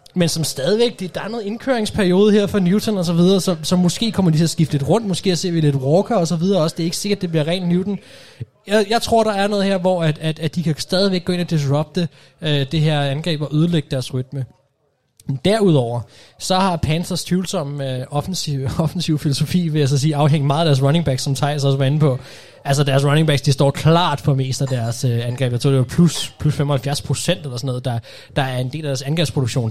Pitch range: 140-175 Hz